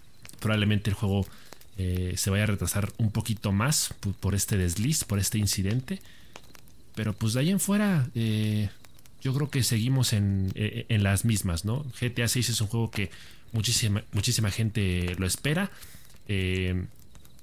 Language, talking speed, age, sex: Spanish, 155 wpm, 30-49, male